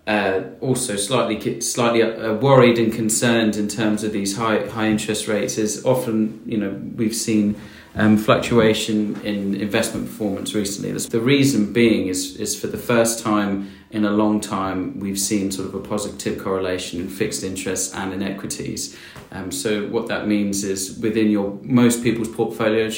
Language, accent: English, British